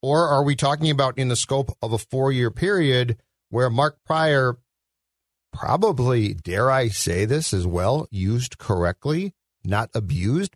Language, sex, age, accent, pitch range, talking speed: English, male, 50-69, American, 110-145 Hz, 150 wpm